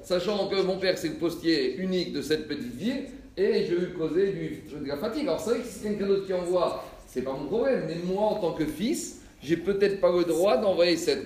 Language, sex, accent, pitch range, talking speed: French, male, French, 175-235 Hz, 250 wpm